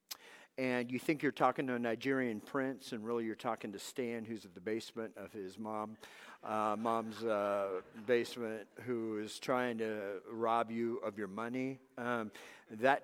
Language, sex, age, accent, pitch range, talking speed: English, male, 50-69, American, 115-155 Hz, 170 wpm